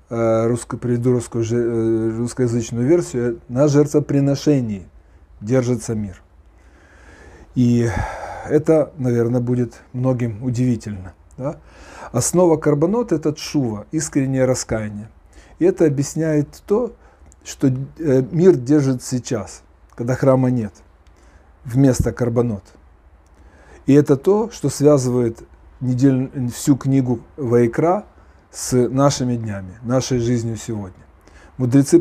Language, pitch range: Russian, 105-140 Hz